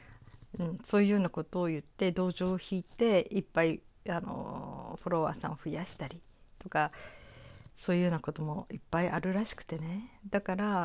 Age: 50-69